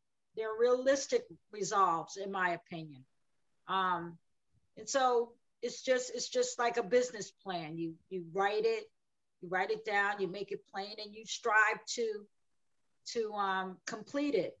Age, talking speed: 50-69, 150 wpm